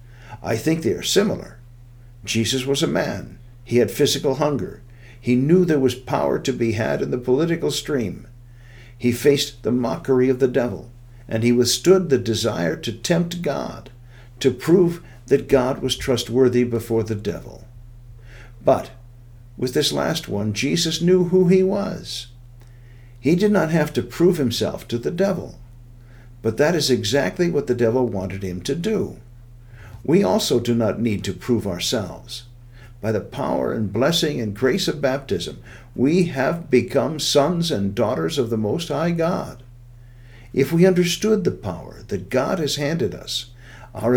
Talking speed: 160 wpm